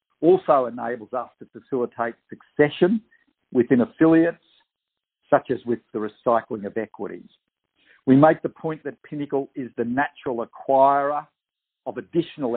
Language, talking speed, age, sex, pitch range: English, 130 wpm, 50-69, male, 115-155 Hz